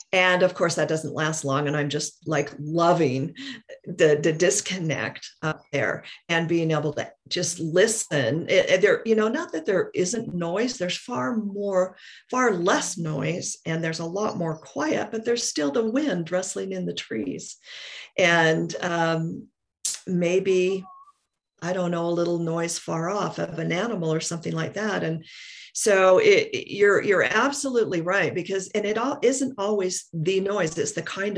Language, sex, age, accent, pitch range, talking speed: English, female, 50-69, American, 160-205 Hz, 170 wpm